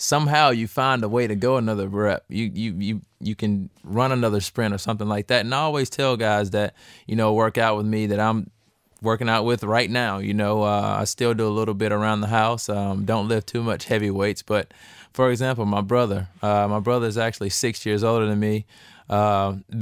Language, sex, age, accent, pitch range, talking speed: English, male, 20-39, American, 105-125 Hz, 225 wpm